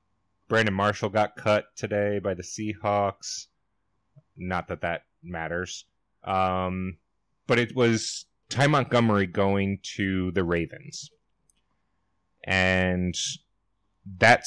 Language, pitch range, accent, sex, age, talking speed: English, 90-115 Hz, American, male, 30-49, 100 wpm